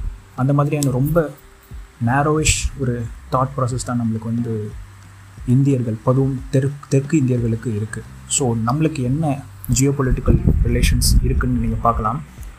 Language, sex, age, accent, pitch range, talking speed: Tamil, male, 20-39, native, 115-140 Hz, 120 wpm